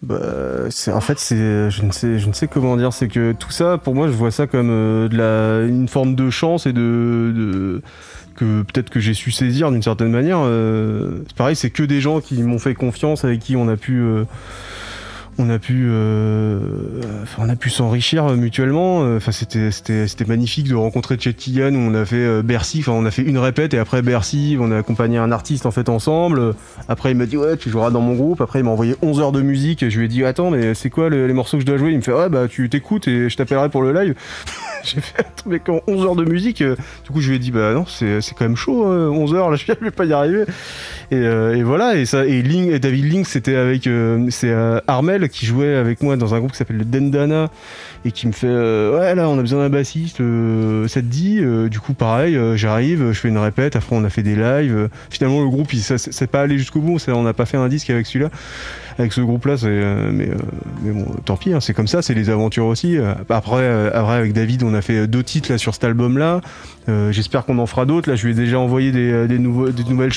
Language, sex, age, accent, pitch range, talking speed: French, male, 20-39, French, 115-140 Hz, 260 wpm